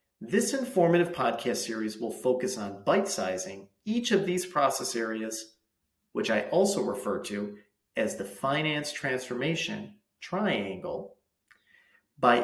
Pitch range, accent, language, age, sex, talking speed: 115-195 Hz, American, English, 40-59, male, 115 wpm